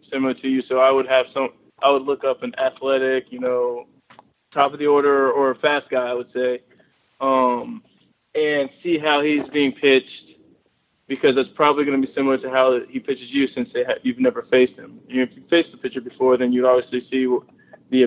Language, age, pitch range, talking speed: English, 20-39, 125-140 Hz, 205 wpm